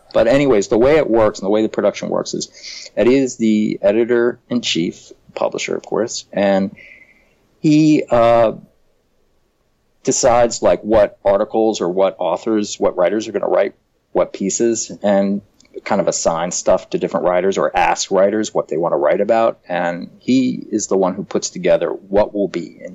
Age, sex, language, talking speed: 40-59, male, English, 180 wpm